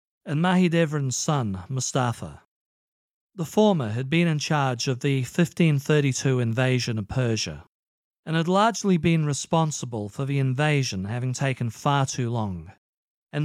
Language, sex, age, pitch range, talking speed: English, male, 40-59, 115-155 Hz, 135 wpm